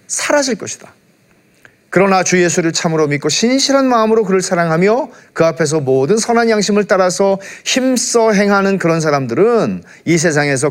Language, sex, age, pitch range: Korean, male, 40-59, 140-215 Hz